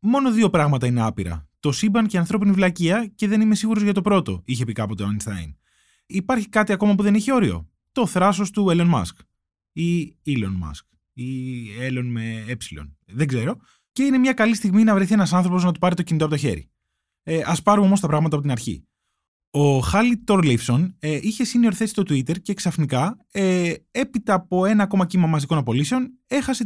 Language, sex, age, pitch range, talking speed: Greek, male, 20-39, 135-205 Hz, 195 wpm